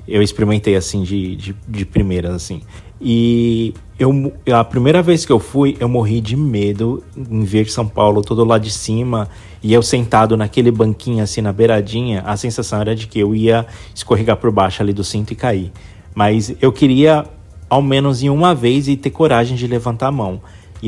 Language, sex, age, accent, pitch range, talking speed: Portuguese, male, 20-39, Brazilian, 105-135 Hz, 195 wpm